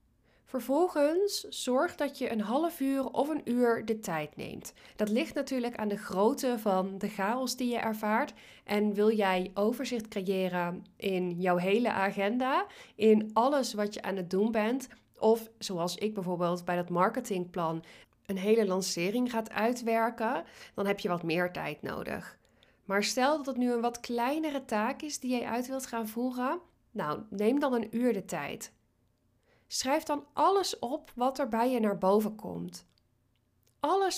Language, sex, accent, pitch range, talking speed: Dutch, female, Dutch, 195-255 Hz, 170 wpm